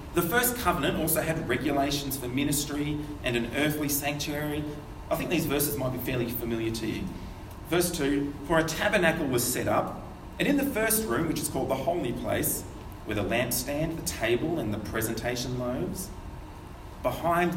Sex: male